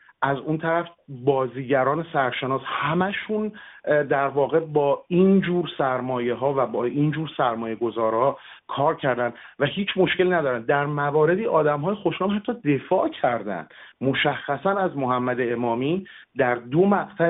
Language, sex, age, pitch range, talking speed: Persian, male, 40-59, 135-180 Hz, 130 wpm